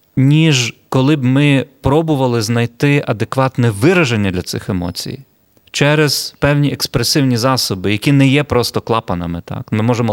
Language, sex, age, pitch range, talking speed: Ukrainian, male, 30-49, 110-145 Hz, 135 wpm